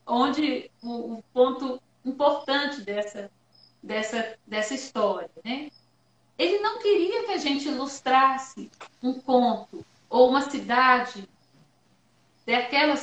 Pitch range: 240-305 Hz